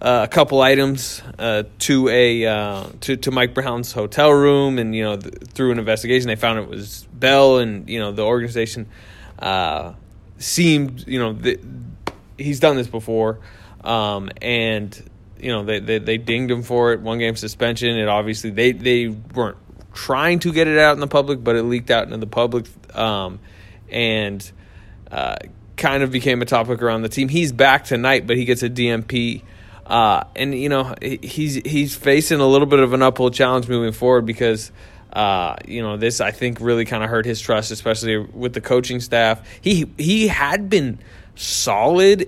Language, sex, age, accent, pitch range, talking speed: English, male, 20-39, American, 110-130 Hz, 185 wpm